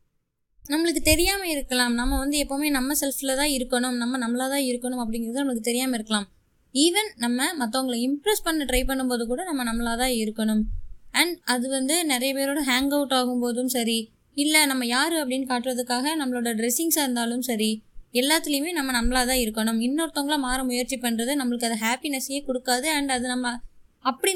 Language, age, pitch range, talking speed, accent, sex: Tamil, 20-39, 240-295 Hz, 155 wpm, native, female